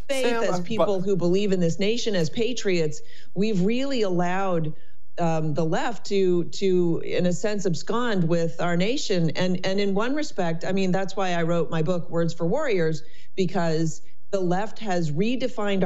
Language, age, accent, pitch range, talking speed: English, 40-59, American, 165-225 Hz, 175 wpm